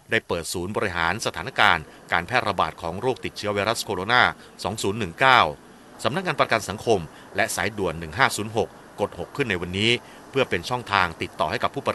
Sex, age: male, 30-49